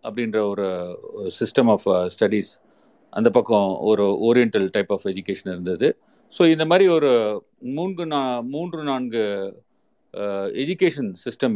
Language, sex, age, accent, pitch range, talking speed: Tamil, male, 40-59, native, 110-160 Hz, 115 wpm